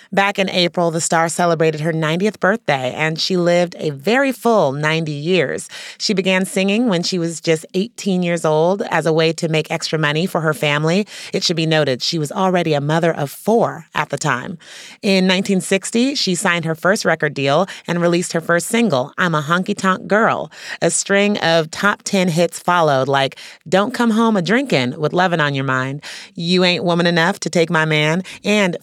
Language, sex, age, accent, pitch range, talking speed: English, female, 30-49, American, 160-195 Hz, 200 wpm